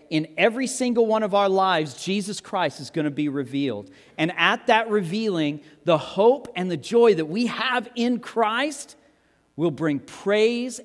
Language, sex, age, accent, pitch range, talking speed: English, male, 40-59, American, 130-190 Hz, 170 wpm